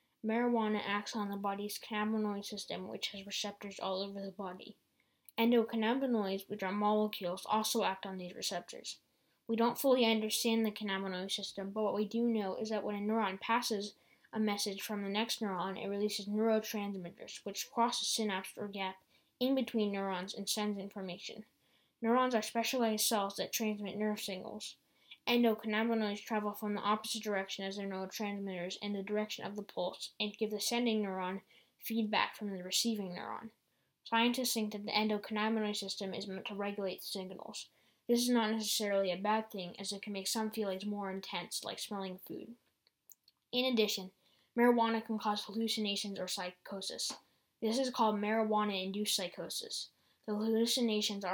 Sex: female